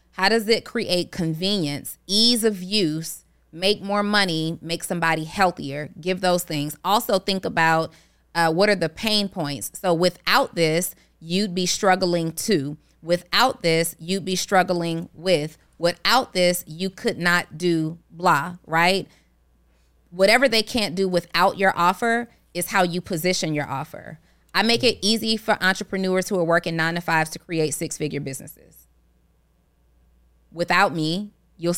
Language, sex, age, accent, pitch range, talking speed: English, female, 20-39, American, 160-195 Hz, 150 wpm